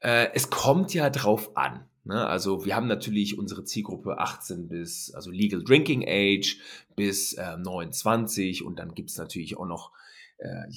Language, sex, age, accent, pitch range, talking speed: German, male, 30-49, German, 95-115 Hz, 160 wpm